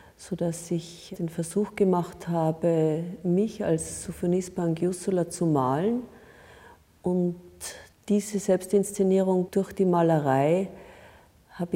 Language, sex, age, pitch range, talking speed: German, female, 40-59, 160-190 Hz, 95 wpm